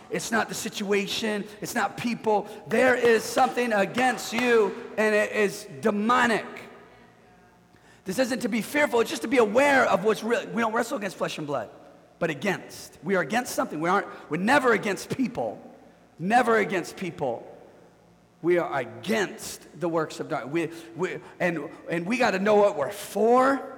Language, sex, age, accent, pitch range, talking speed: English, male, 40-59, American, 150-225 Hz, 175 wpm